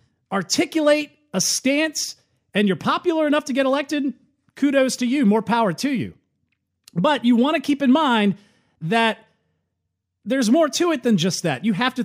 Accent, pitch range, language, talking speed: American, 195-270 Hz, English, 175 wpm